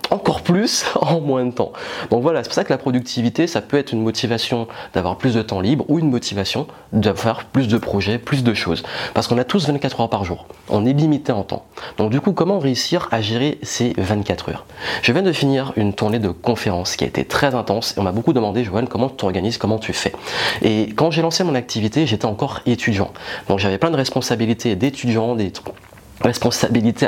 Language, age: French, 30-49